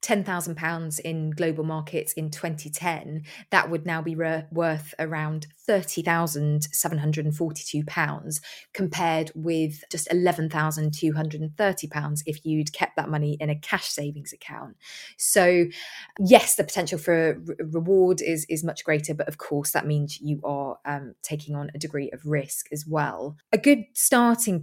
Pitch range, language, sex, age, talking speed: 150-175 Hz, English, female, 20-39, 135 wpm